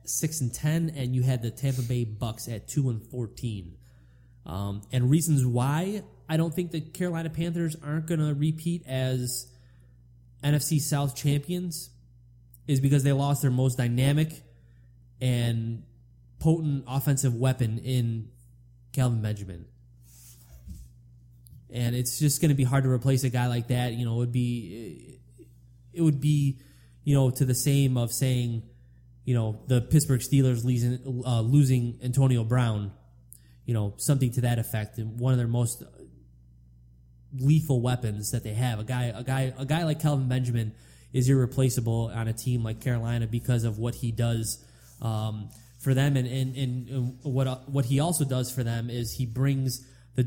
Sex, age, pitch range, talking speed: male, 20-39, 115-135 Hz, 160 wpm